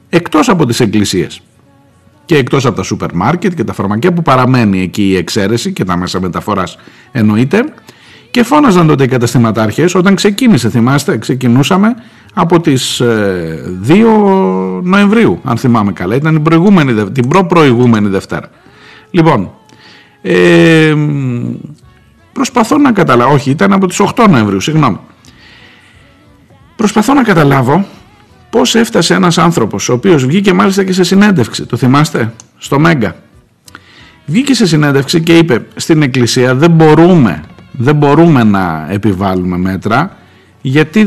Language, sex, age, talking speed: Greek, male, 50-69, 130 wpm